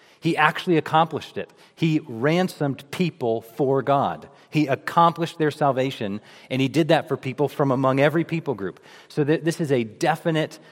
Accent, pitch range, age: American, 115-150 Hz, 40-59